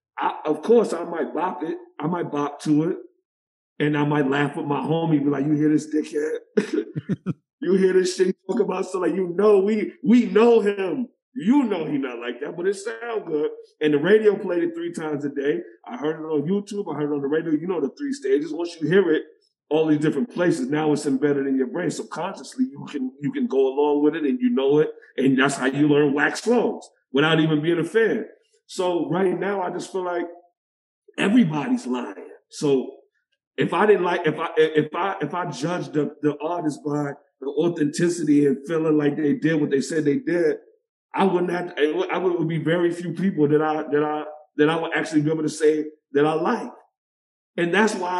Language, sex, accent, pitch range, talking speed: English, male, American, 150-210 Hz, 225 wpm